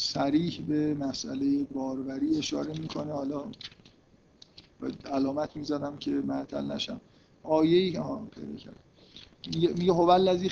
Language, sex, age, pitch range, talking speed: Persian, male, 50-69, 155-190 Hz, 115 wpm